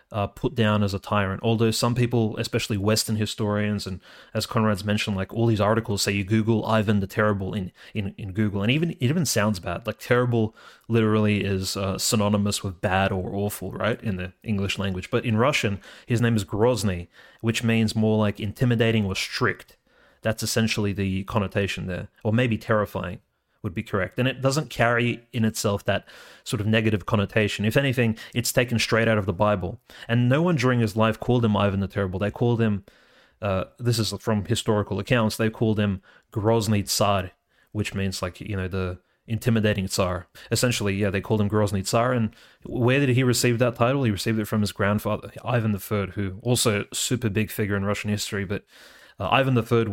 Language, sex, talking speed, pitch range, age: English, male, 200 wpm, 100-115 Hz, 30-49